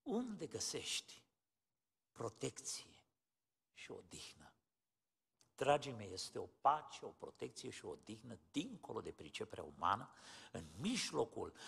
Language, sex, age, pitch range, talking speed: Romanian, male, 60-79, 145-245 Hz, 110 wpm